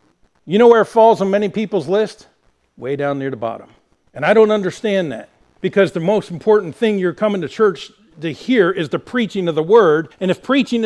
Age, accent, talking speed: 50-69, American, 215 wpm